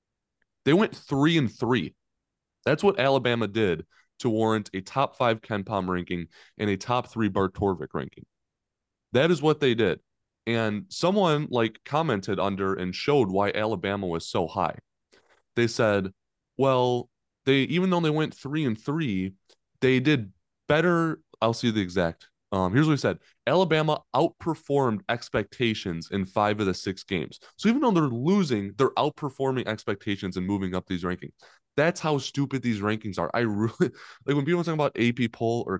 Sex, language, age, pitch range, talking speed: male, English, 20-39, 95-135 Hz, 170 wpm